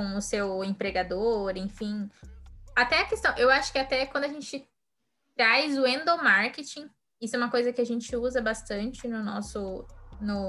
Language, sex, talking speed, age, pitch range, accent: Portuguese, female, 170 wpm, 10-29, 200-245 Hz, Brazilian